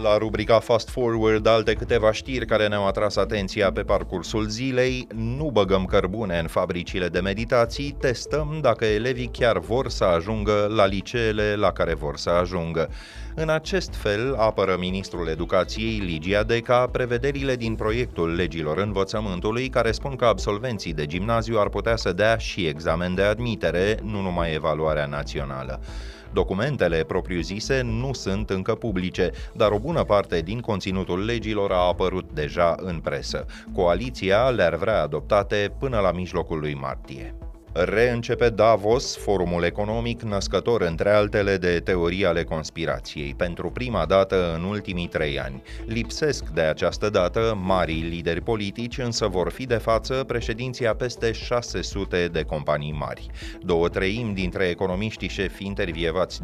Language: Romanian